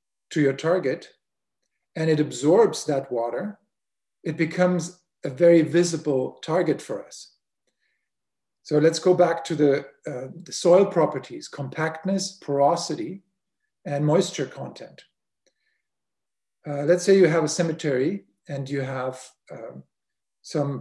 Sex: male